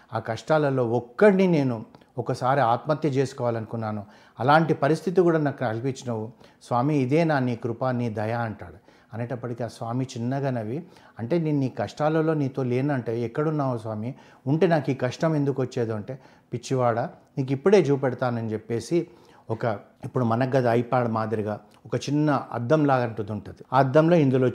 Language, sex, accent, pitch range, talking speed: Telugu, male, native, 120-145 Hz, 140 wpm